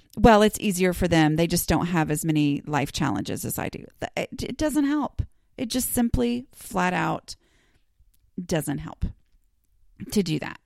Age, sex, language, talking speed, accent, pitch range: 30-49, female, English, 170 wpm, American, 145-220 Hz